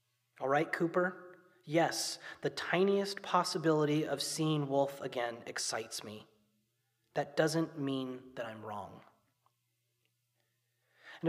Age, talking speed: 30-49, 105 wpm